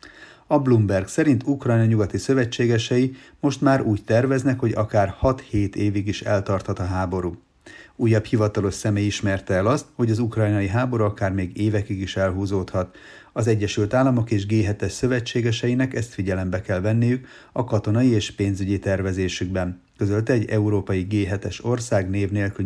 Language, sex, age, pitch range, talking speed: Hungarian, male, 30-49, 95-115 Hz, 145 wpm